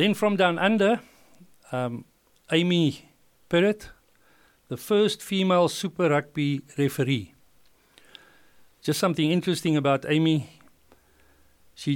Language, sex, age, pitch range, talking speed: English, male, 50-69, 135-175 Hz, 95 wpm